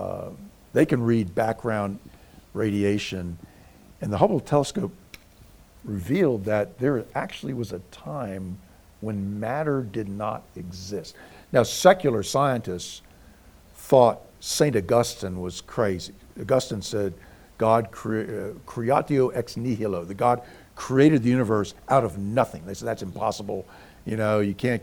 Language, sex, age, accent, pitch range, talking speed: English, male, 50-69, American, 100-130 Hz, 130 wpm